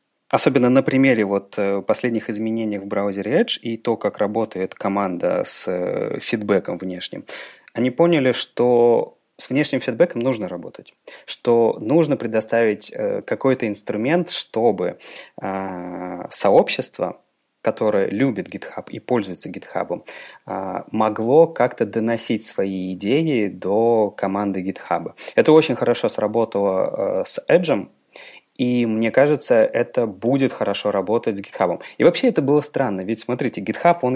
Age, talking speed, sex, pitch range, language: 30-49, 125 wpm, male, 110-135 Hz, Russian